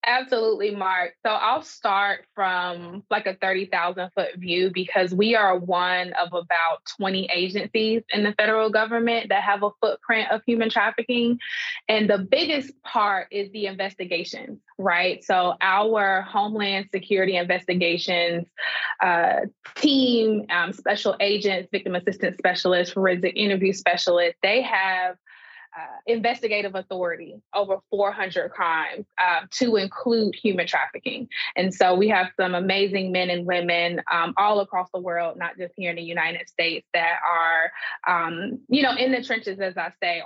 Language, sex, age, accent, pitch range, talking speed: English, female, 20-39, American, 180-210 Hz, 145 wpm